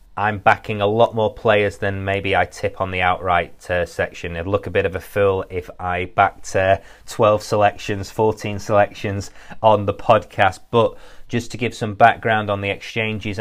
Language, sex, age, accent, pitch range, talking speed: English, male, 30-49, British, 100-115 Hz, 190 wpm